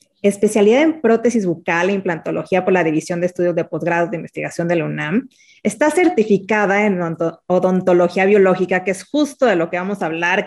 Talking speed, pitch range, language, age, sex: 185 wpm, 180-230 Hz, Spanish, 30-49, female